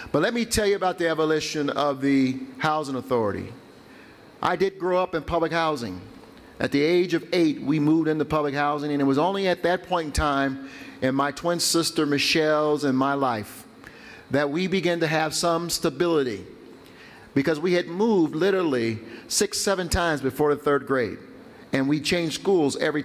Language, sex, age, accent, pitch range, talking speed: English, male, 50-69, American, 140-170 Hz, 180 wpm